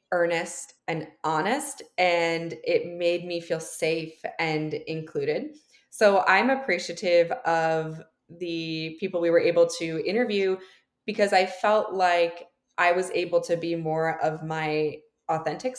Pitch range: 160-190 Hz